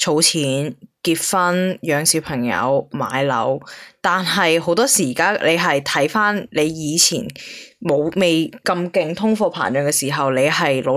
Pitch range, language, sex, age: 140-175 Hz, Chinese, female, 20-39